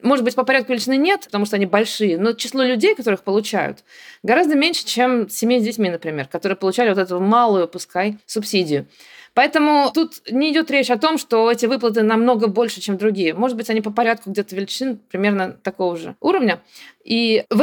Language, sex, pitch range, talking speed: Russian, female, 200-255 Hz, 190 wpm